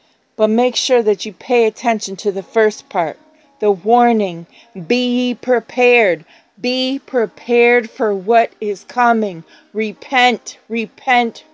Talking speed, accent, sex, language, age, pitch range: 120 wpm, American, female, English, 40-59, 215-250 Hz